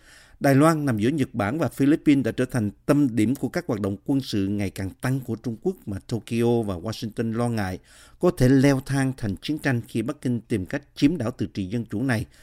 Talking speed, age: 240 wpm, 50-69